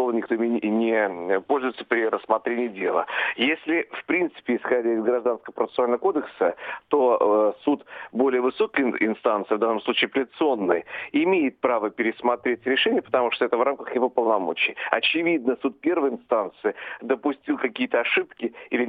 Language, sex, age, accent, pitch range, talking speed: Russian, male, 50-69, native, 120-155 Hz, 135 wpm